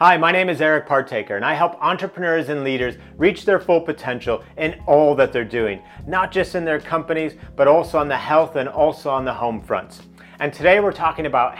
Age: 30-49